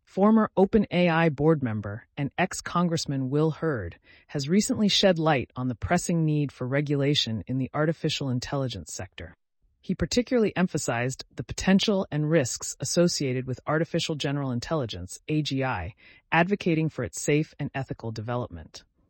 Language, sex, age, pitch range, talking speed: English, female, 30-49, 125-170 Hz, 135 wpm